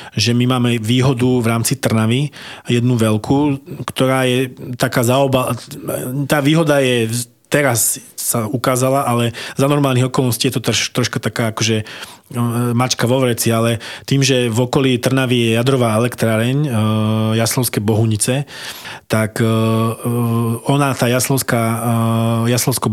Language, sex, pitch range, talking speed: Slovak, male, 115-130 Hz, 120 wpm